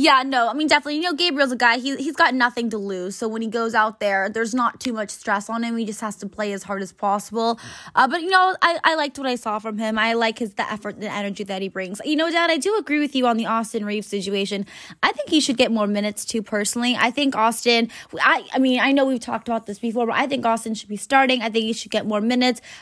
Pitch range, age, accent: 215-255 Hz, 20-39, American